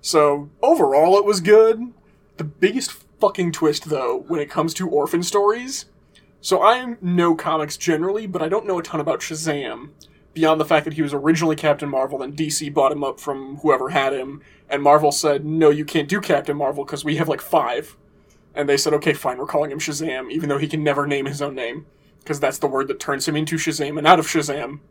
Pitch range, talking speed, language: 145-185 Hz, 220 wpm, English